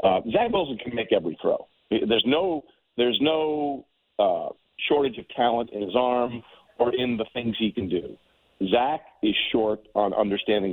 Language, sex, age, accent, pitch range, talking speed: English, male, 50-69, American, 105-130 Hz, 170 wpm